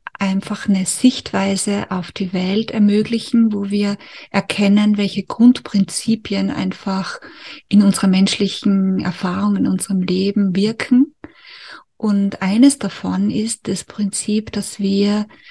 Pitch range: 195-220 Hz